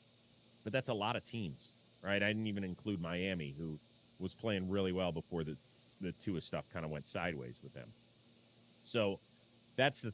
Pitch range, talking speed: 95-120 Hz, 185 wpm